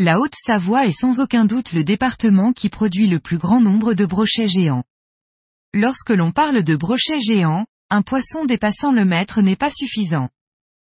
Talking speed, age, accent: 170 wpm, 20-39, French